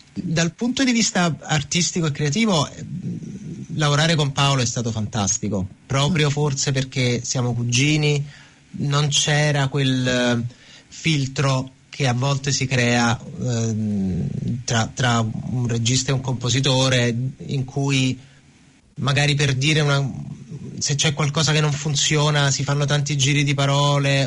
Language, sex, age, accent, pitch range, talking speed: Italian, male, 30-49, native, 130-145 Hz, 130 wpm